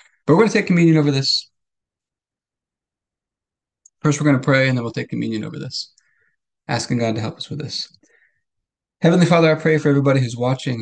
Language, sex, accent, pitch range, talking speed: English, male, American, 120-140 Hz, 195 wpm